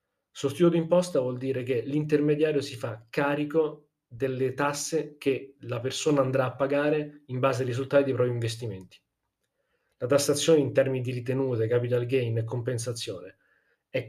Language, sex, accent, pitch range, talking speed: Italian, male, native, 120-145 Hz, 150 wpm